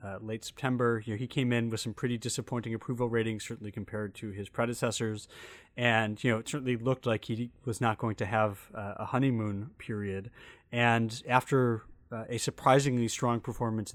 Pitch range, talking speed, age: 105-125 Hz, 185 wpm, 30-49